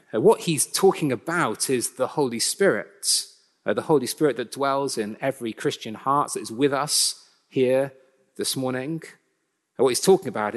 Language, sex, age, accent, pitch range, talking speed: English, male, 40-59, British, 145-200 Hz, 160 wpm